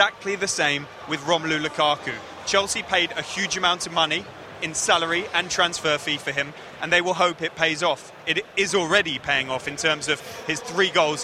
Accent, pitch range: British, 155-195 Hz